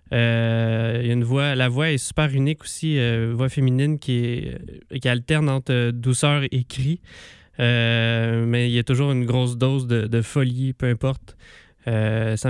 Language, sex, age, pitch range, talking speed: French, male, 20-39, 115-135 Hz, 185 wpm